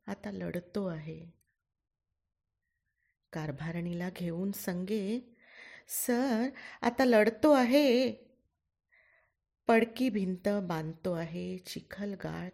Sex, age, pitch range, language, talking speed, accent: female, 30-49, 175-240 Hz, Marathi, 70 wpm, native